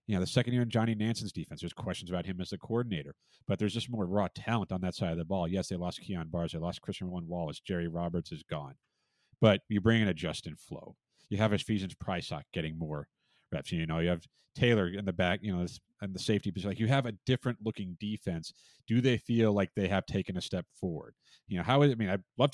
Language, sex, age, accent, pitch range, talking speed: English, male, 40-59, American, 95-125 Hz, 265 wpm